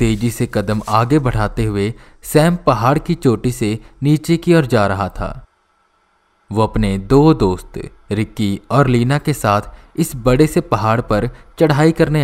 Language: Hindi